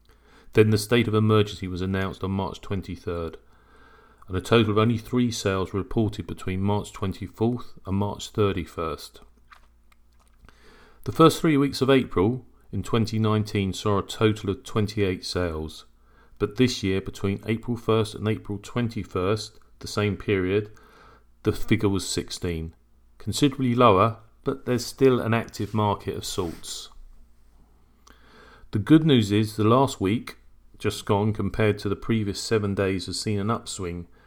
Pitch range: 95-110 Hz